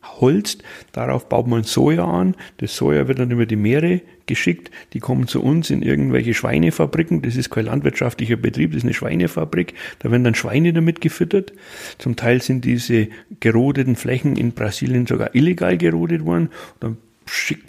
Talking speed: 170 wpm